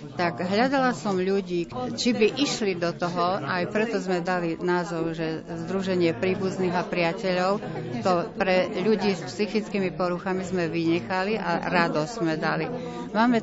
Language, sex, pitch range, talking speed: Slovak, female, 170-195 Hz, 145 wpm